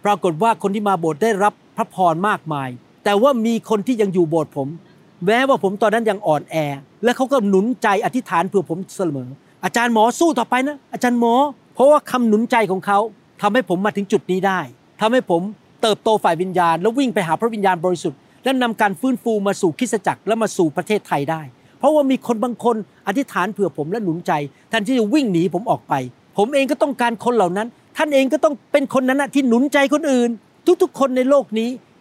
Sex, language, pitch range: male, Thai, 190-255 Hz